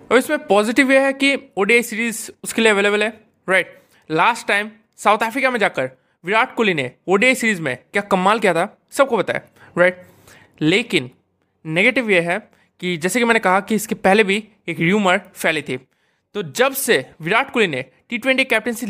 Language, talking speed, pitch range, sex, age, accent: Hindi, 180 wpm, 175-230 Hz, male, 20-39, native